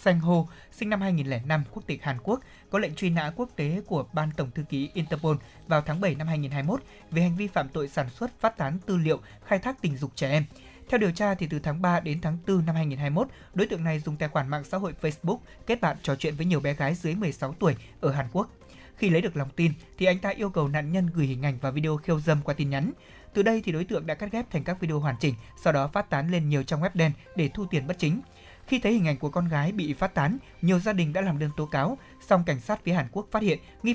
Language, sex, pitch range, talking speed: Vietnamese, male, 150-190 Hz, 275 wpm